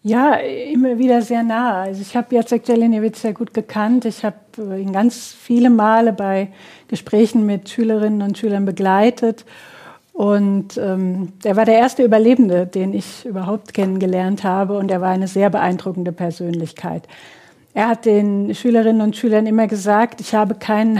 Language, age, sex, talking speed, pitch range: German, 50-69, female, 160 wpm, 195-230 Hz